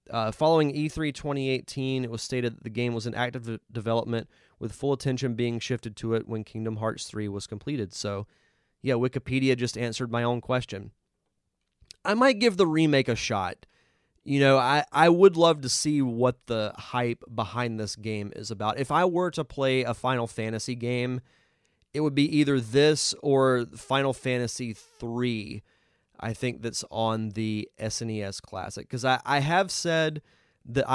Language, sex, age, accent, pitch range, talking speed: English, male, 20-39, American, 110-135 Hz, 175 wpm